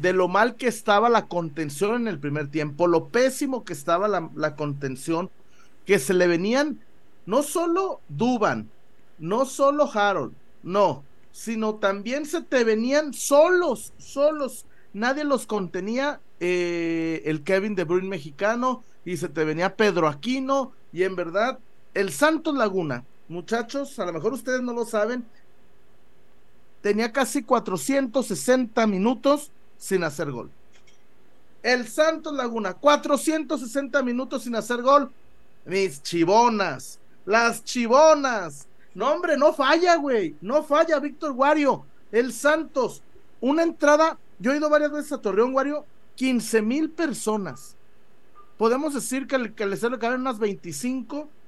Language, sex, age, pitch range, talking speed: Spanish, male, 40-59, 190-275 Hz, 135 wpm